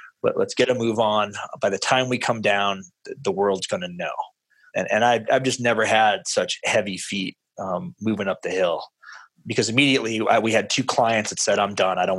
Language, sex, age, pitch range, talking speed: English, male, 20-39, 105-120 Hz, 215 wpm